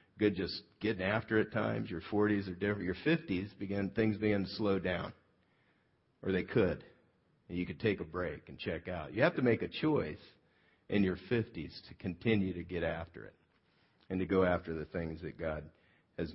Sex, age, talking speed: male, 50-69, 200 wpm